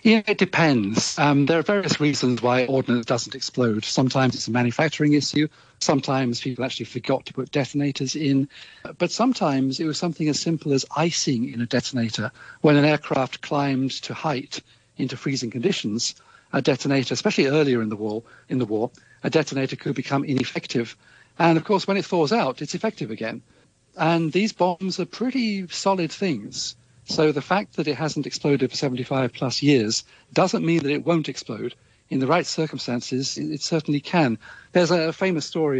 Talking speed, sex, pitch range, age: 175 wpm, male, 125-160 Hz, 50-69